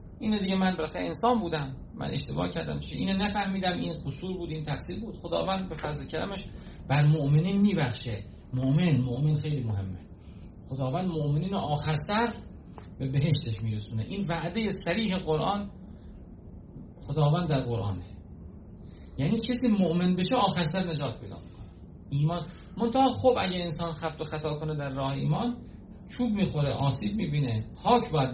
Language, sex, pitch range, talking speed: Persian, male, 100-170 Hz, 145 wpm